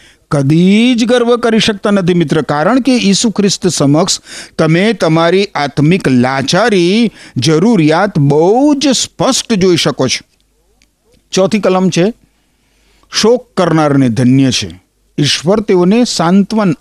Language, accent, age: Gujarati, native, 50-69